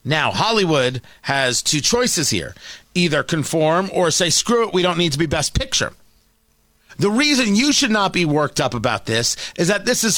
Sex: male